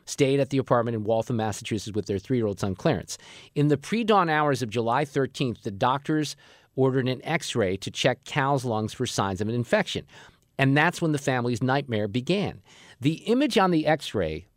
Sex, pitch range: male, 120-150 Hz